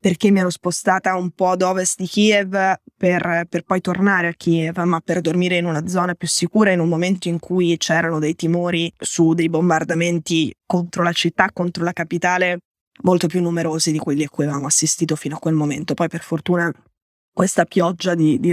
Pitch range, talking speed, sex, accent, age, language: 160-180 Hz, 200 wpm, female, native, 20-39, Italian